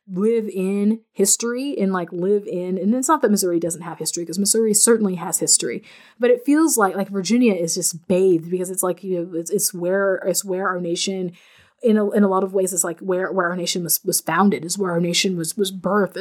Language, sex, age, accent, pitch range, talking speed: English, female, 20-39, American, 175-200 Hz, 235 wpm